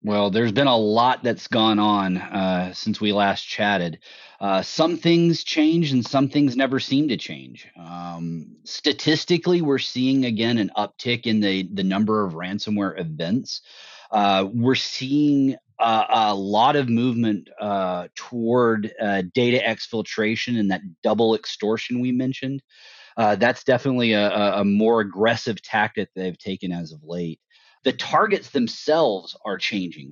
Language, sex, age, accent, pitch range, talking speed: English, male, 30-49, American, 105-140 Hz, 150 wpm